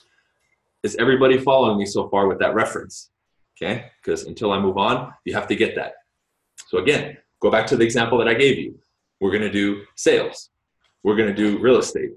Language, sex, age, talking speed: English, male, 20-39, 195 wpm